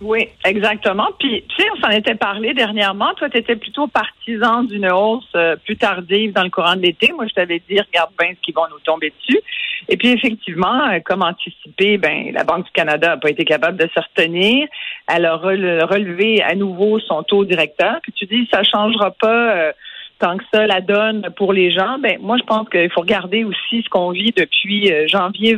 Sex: female